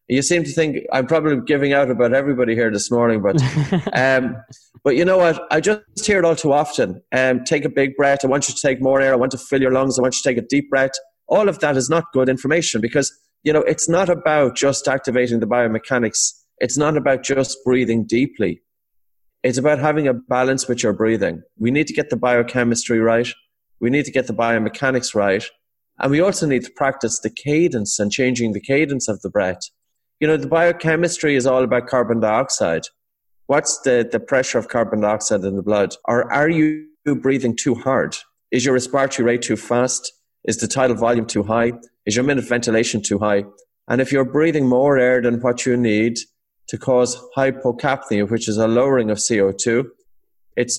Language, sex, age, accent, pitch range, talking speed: English, male, 30-49, Irish, 115-140 Hz, 205 wpm